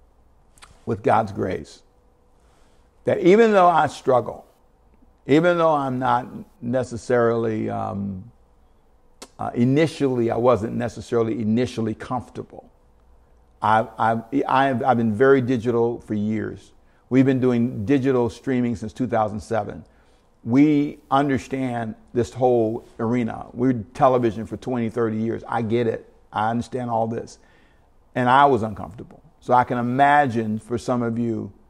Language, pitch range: English, 110-135 Hz